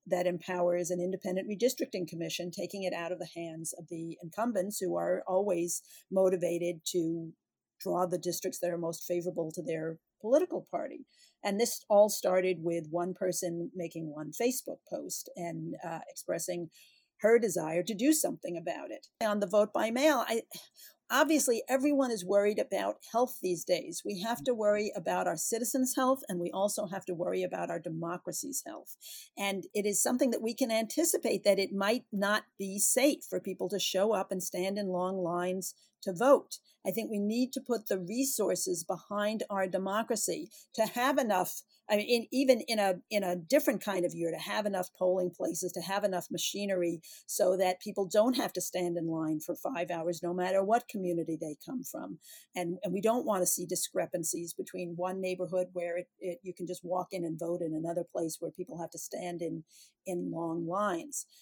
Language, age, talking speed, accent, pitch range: English, 50-69, 190 wpm, American, 175-225 Hz